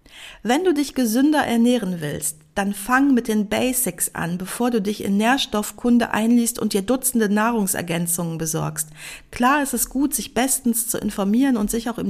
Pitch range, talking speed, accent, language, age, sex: 200-245 Hz, 175 wpm, German, German, 50-69, female